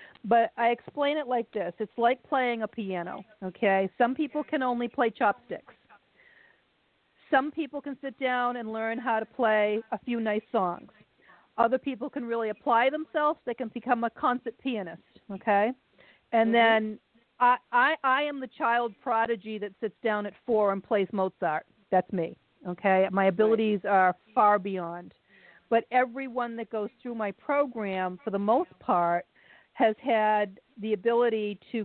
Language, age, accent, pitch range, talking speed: English, 40-59, American, 200-240 Hz, 160 wpm